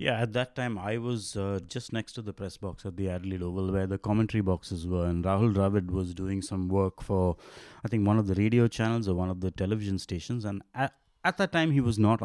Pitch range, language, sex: 95-125 Hz, English, male